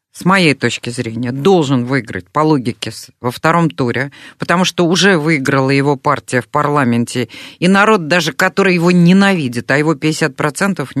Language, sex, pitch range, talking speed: Russian, female, 135-185 Hz, 155 wpm